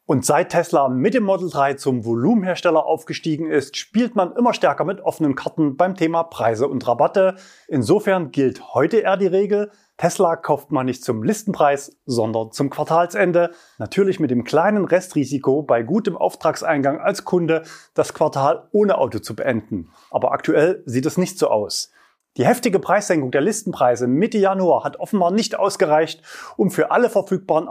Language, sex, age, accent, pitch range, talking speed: German, male, 30-49, German, 145-200 Hz, 165 wpm